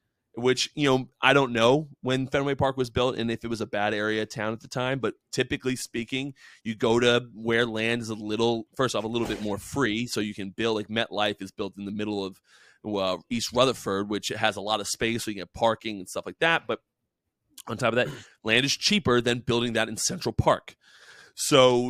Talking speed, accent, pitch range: 230 wpm, American, 105-125 Hz